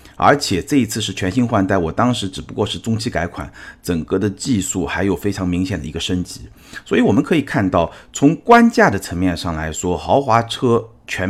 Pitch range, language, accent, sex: 90-120 Hz, Chinese, native, male